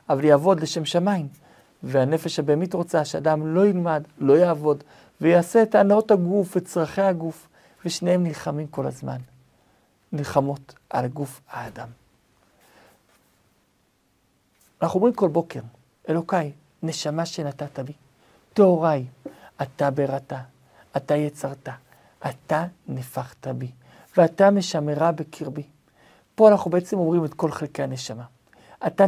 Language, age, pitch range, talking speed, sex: Hebrew, 50-69, 140-185 Hz, 115 wpm, male